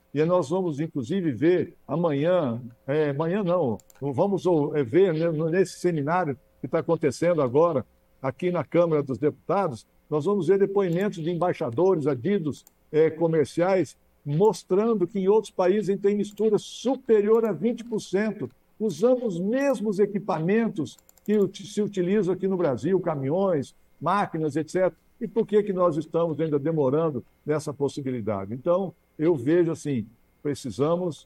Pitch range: 150-195 Hz